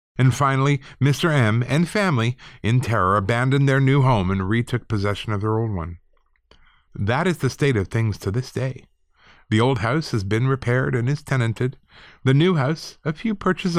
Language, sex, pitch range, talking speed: English, male, 105-145 Hz, 185 wpm